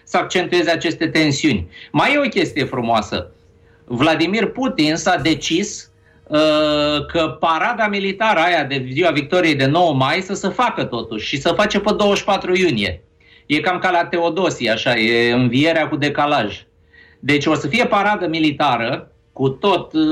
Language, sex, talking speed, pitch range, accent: Romanian, male, 155 wpm, 125-170 Hz, native